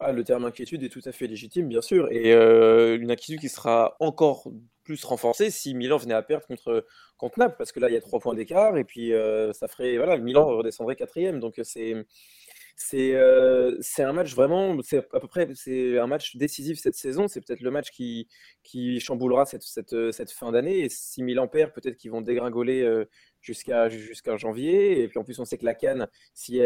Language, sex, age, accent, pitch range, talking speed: French, male, 20-39, French, 115-155 Hz, 220 wpm